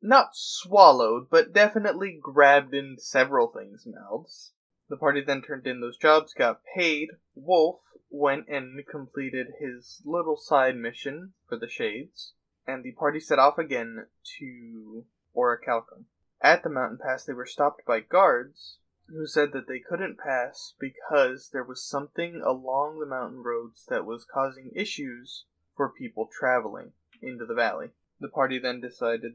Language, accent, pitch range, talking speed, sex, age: English, American, 115-170 Hz, 150 wpm, male, 20-39